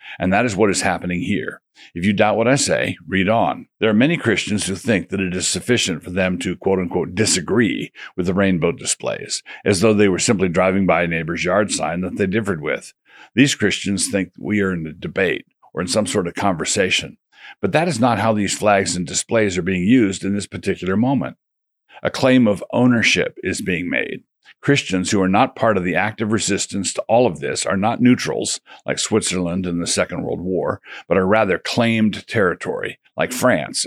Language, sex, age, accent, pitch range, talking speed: English, male, 60-79, American, 90-110 Hz, 205 wpm